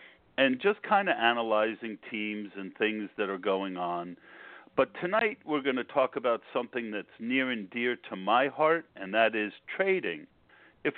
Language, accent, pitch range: English, American, 110-175 Hz